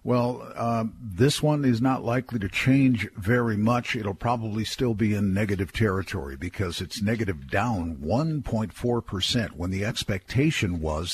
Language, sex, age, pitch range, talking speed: English, male, 50-69, 100-125 Hz, 145 wpm